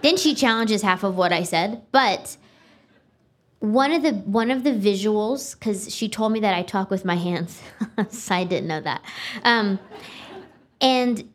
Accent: American